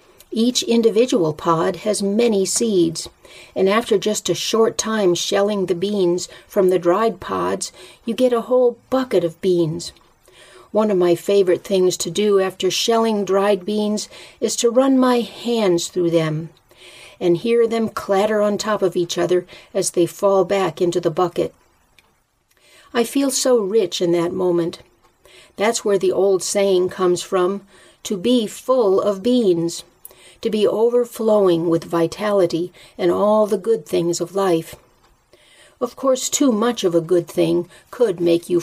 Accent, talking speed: American, 160 wpm